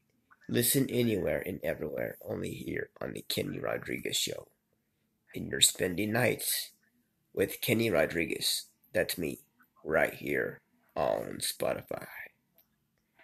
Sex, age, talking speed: male, 30-49, 110 wpm